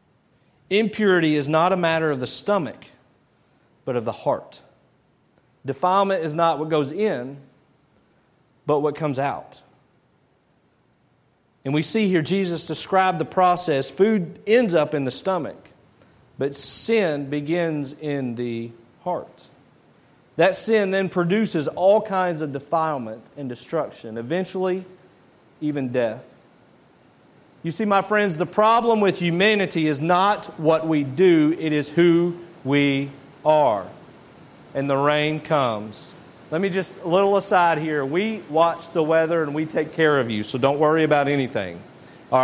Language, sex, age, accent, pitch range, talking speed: English, male, 40-59, American, 145-185 Hz, 140 wpm